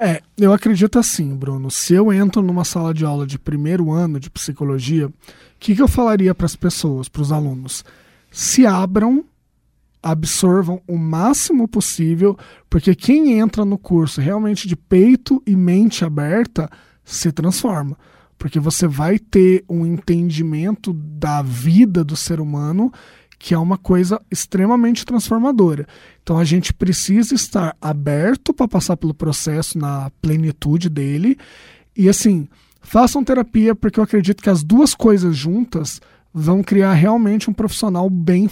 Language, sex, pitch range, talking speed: Portuguese, male, 165-215 Hz, 145 wpm